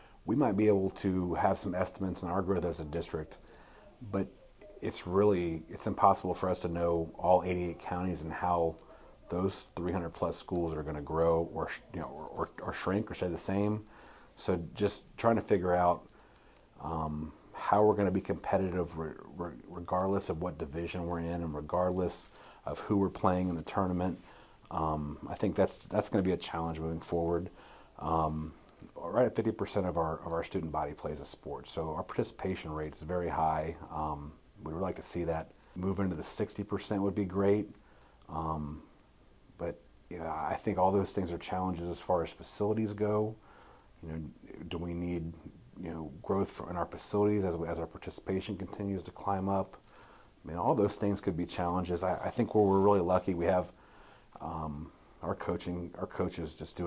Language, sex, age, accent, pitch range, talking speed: English, male, 40-59, American, 80-100 Hz, 190 wpm